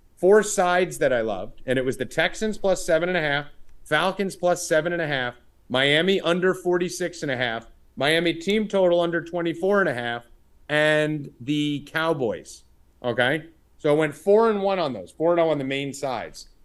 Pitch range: 145-210 Hz